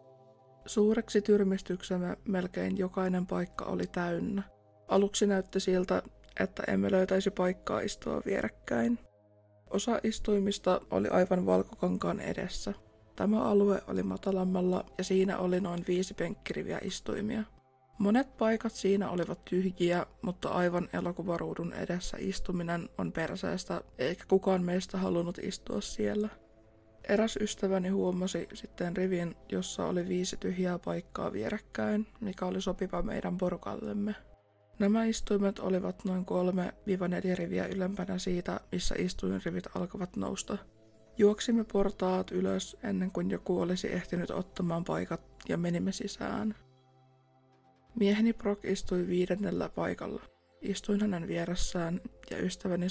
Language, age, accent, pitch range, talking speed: Finnish, 20-39, native, 170-200 Hz, 115 wpm